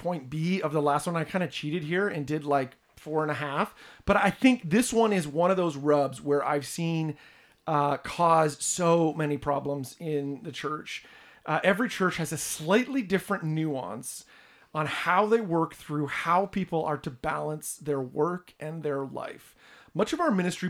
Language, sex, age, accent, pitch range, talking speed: English, male, 40-59, American, 155-210 Hz, 190 wpm